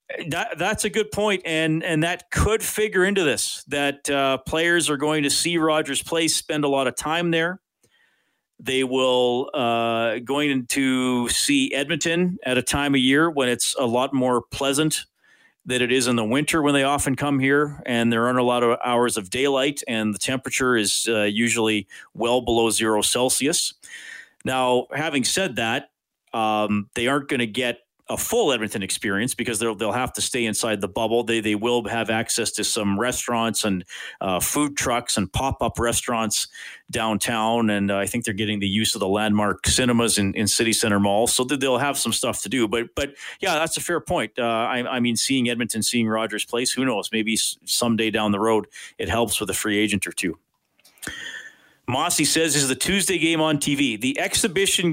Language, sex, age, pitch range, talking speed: English, male, 40-59, 115-145 Hz, 195 wpm